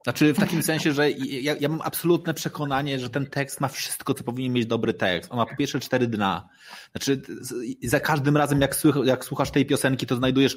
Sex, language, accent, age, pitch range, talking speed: male, Polish, native, 20-39, 115-140 Hz, 215 wpm